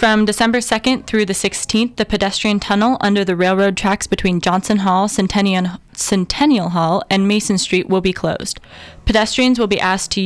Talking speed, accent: 175 wpm, American